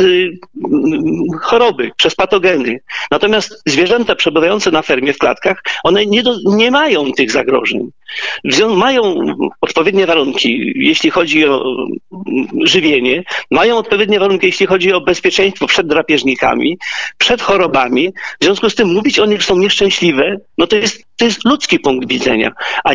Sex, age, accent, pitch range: male, 50-69, native, 180-245 Hz